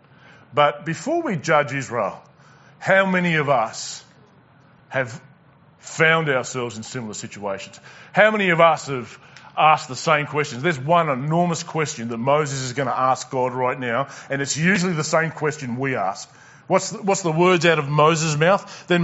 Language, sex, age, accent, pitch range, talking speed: English, male, 30-49, Australian, 150-215 Hz, 175 wpm